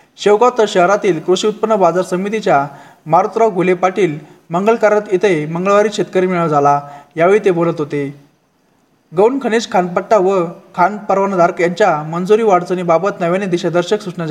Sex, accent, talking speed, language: male, native, 140 wpm, Marathi